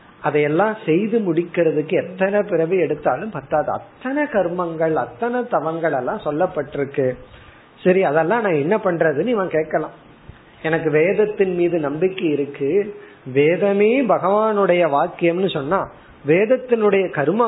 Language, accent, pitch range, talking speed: Tamil, native, 145-185 Hz, 60 wpm